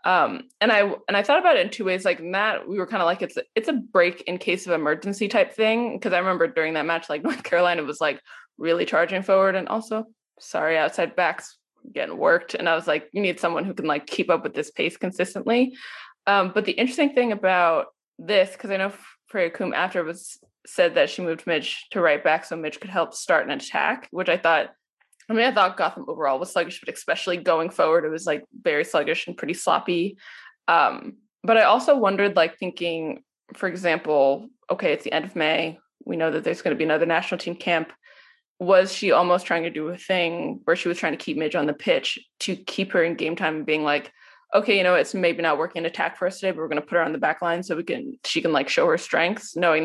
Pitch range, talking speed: 165-245 Hz, 240 wpm